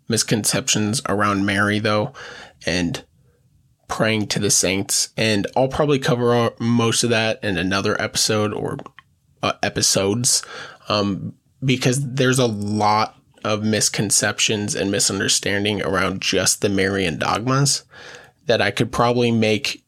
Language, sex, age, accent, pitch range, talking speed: English, male, 20-39, American, 105-130 Hz, 125 wpm